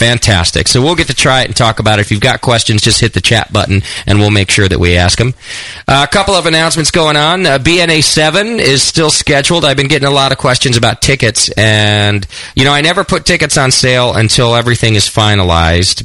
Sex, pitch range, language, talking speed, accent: male, 90-125 Hz, English, 230 wpm, American